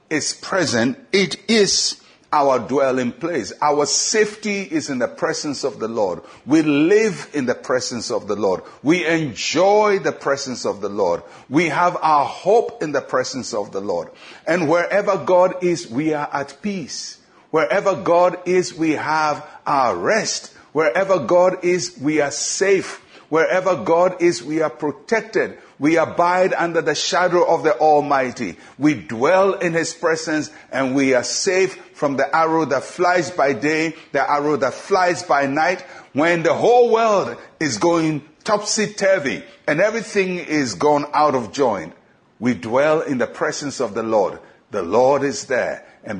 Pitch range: 150-195 Hz